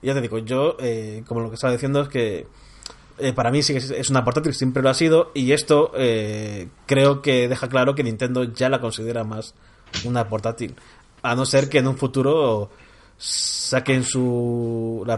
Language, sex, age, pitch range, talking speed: Spanish, male, 20-39, 115-135 Hz, 195 wpm